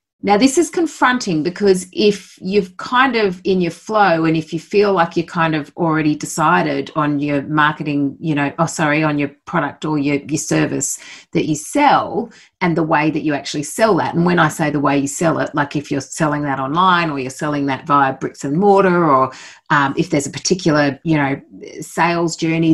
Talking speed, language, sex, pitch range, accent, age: 210 wpm, English, female, 145-180 Hz, Australian, 40-59